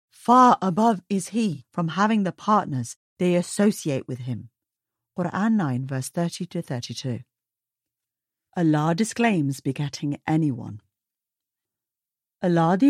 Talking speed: 110 wpm